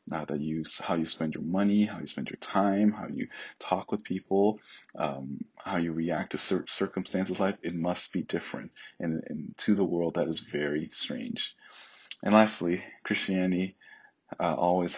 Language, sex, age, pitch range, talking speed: English, male, 30-49, 80-95 Hz, 180 wpm